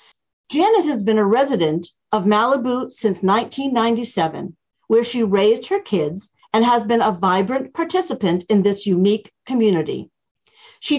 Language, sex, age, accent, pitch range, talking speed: English, female, 50-69, American, 195-265 Hz, 135 wpm